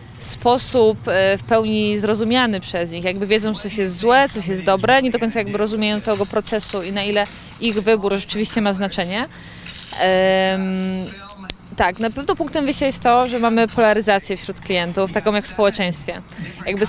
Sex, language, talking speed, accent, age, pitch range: female, Polish, 170 wpm, native, 20-39, 195-225 Hz